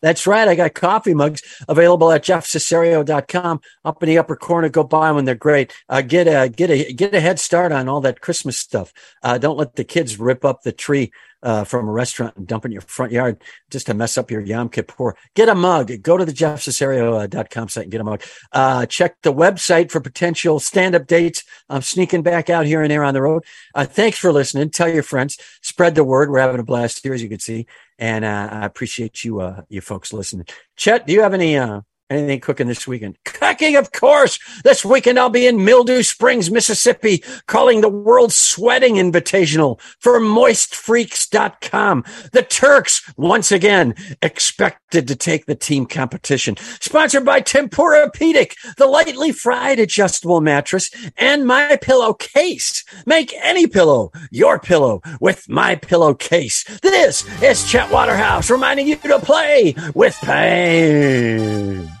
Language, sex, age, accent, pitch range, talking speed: English, male, 50-69, American, 130-215 Hz, 180 wpm